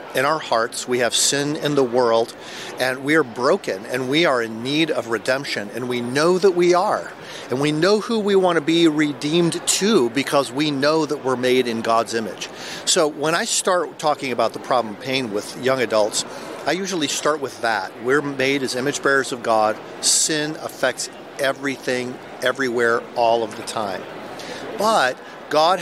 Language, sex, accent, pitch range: English, male, American, 125-150 Hz